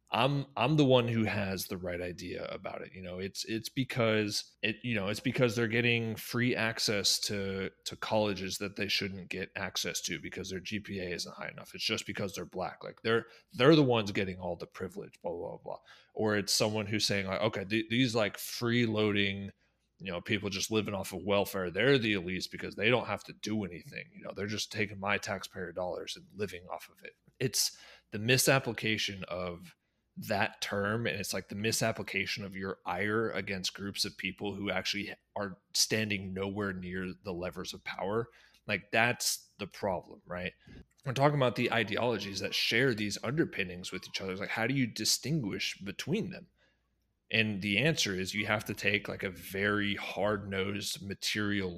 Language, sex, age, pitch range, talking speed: English, male, 30-49, 95-110 Hz, 190 wpm